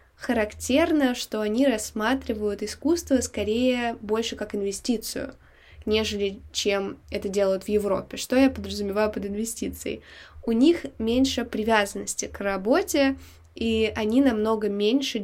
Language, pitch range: Russian, 205-250 Hz